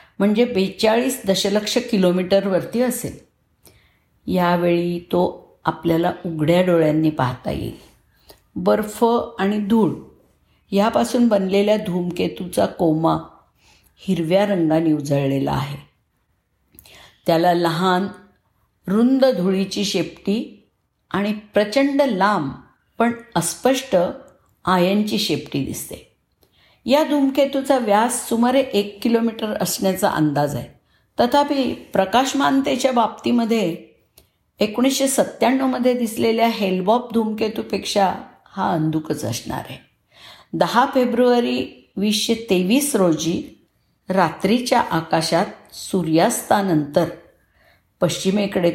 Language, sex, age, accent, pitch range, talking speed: Marathi, female, 50-69, native, 170-230 Hz, 80 wpm